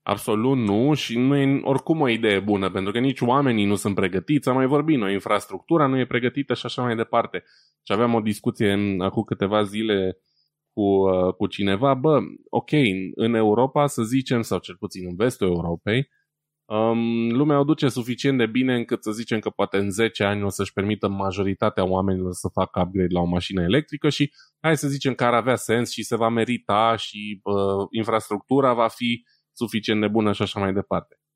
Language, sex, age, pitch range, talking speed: Romanian, male, 20-39, 100-125 Hz, 195 wpm